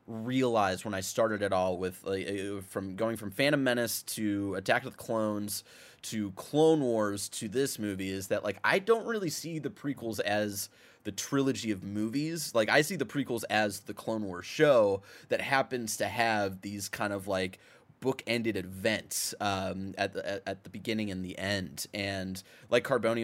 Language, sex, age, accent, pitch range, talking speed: English, male, 20-39, American, 100-140 Hz, 180 wpm